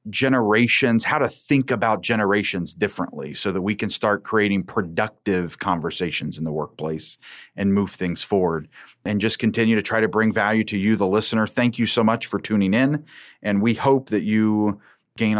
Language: English